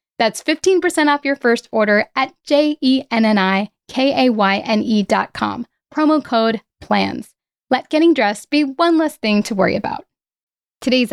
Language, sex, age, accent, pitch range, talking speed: English, female, 10-29, American, 215-295 Hz, 125 wpm